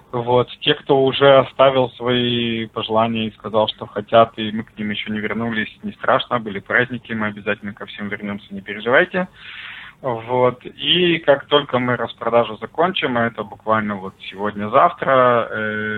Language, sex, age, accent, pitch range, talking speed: Russian, male, 20-39, native, 105-120 Hz, 155 wpm